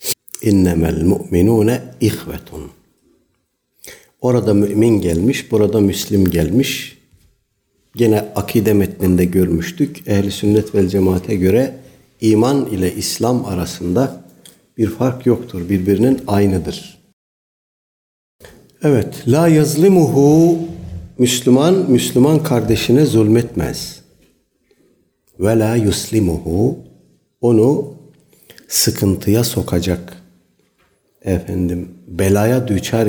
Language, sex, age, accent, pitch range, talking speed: Turkish, male, 60-79, native, 90-120 Hz, 80 wpm